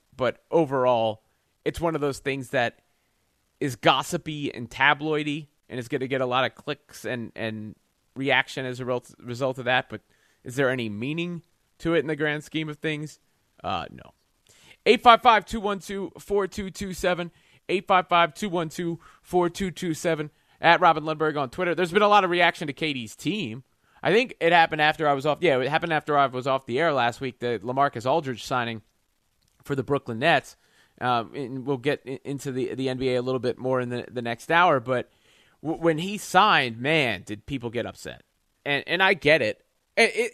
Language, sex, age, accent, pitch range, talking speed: English, male, 30-49, American, 130-175 Hz, 210 wpm